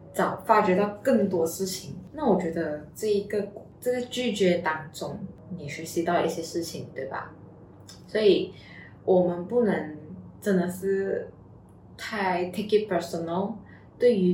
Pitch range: 170-195 Hz